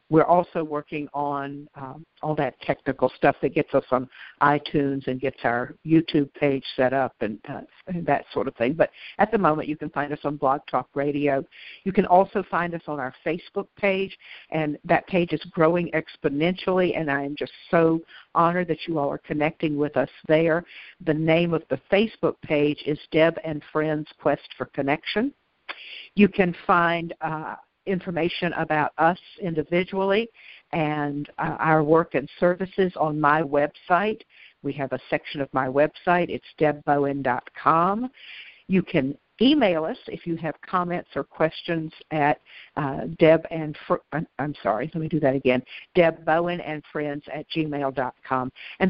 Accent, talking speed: American, 165 wpm